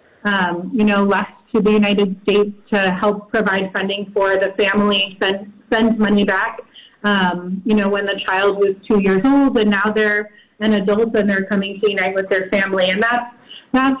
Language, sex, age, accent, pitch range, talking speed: English, female, 30-49, American, 200-230 Hz, 195 wpm